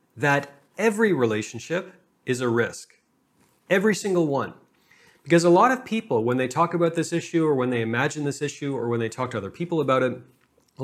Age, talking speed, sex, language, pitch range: 40-59, 200 wpm, male, English, 125-170 Hz